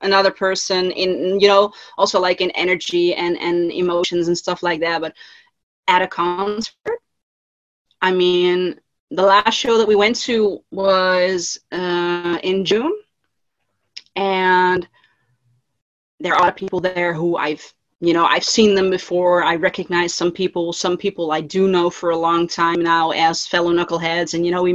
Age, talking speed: 30-49, 170 wpm